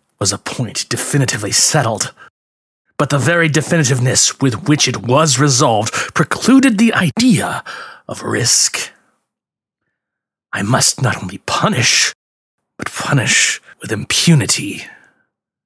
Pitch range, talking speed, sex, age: 120-155 Hz, 105 wpm, male, 30-49